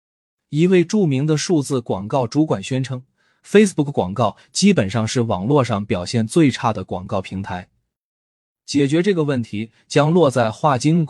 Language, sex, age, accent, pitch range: Chinese, male, 20-39, native, 110-160 Hz